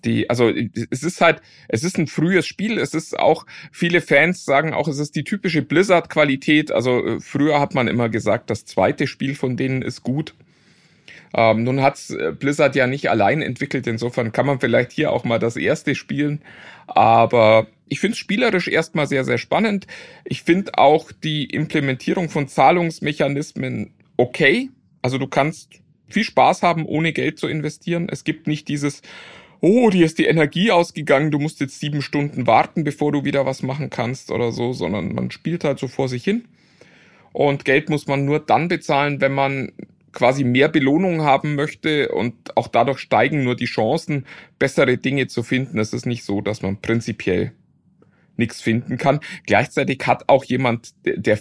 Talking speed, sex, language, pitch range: 180 wpm, male, German, 125-160 Hz